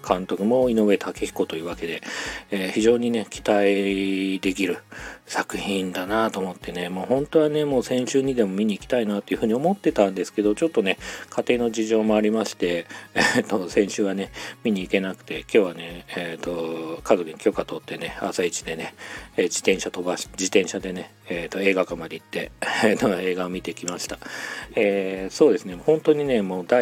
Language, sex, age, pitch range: Japanese, male, 40-59, 95-115 Hz